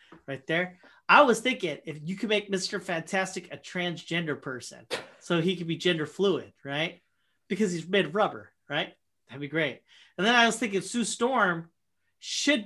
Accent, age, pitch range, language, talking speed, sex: American, 40-59, 160-205 Hz, English, 180 wpm, male